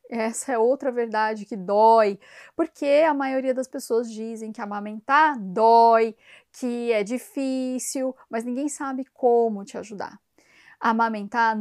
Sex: female